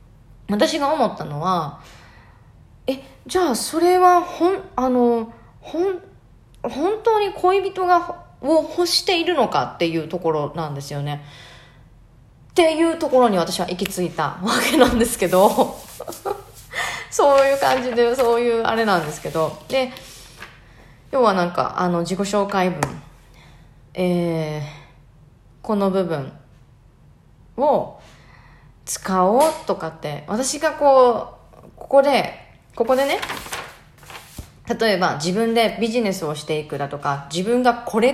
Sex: female